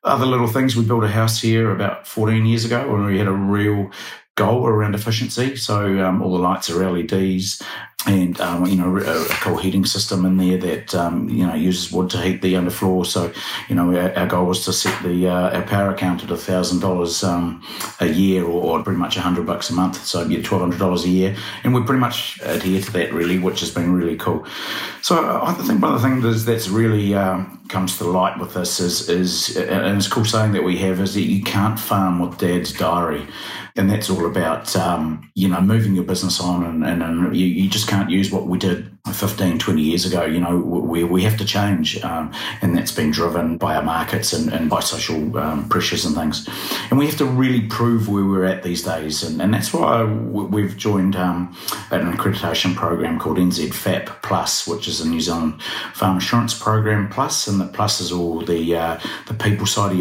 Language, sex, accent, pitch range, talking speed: English, male, Australian, 90-105 Hz, 225 wpm